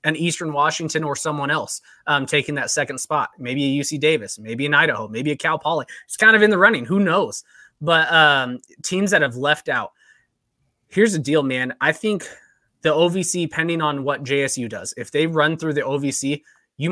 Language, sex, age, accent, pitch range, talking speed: English, male, 20-39, American, 145-175 Hz, 200 wpm